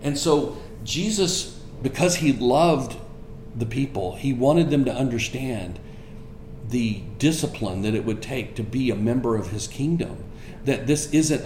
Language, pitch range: English, 110-130 Hz